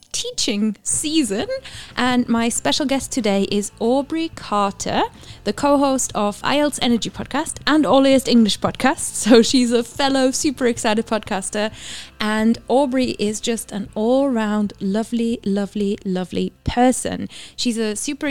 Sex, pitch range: female, 205-255 Hz